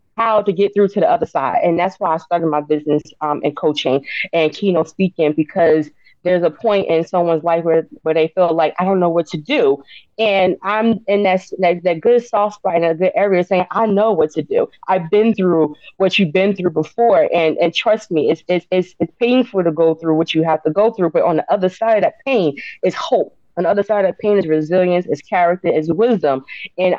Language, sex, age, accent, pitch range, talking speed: English, female, 20-39, American, 165-205 Hz, 235 wpm